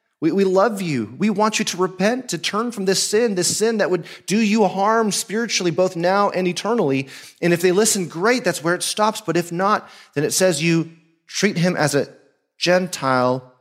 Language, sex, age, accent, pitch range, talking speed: English, male, 30-49, American, 130-180 Hz, 205 wpm